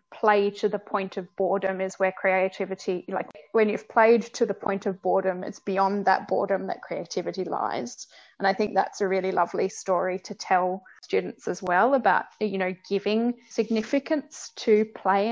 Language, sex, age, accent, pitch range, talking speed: English, female, 20-39, Australian, 190-210 Hz, 175 wpm